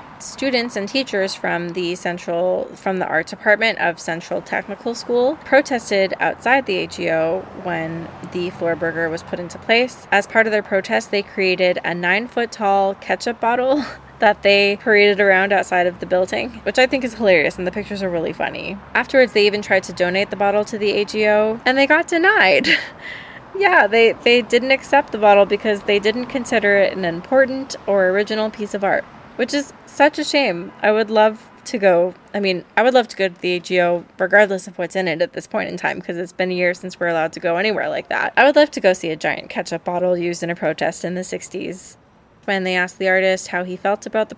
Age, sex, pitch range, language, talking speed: 20-39, female, 180-225 Hz, English, 220 wpm